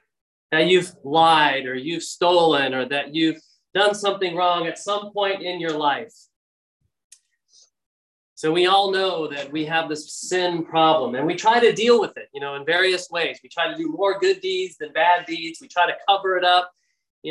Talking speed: 200 wpm